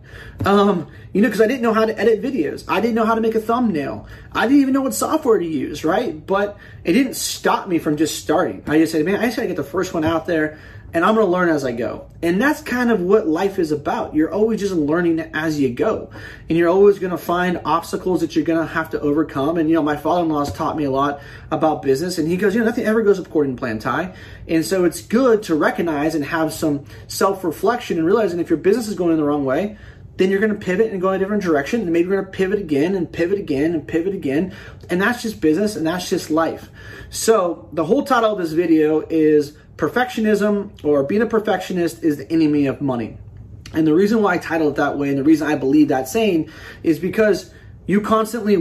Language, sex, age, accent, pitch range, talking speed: English, male, 30-49, American, 145-200 Hz, 240 wpm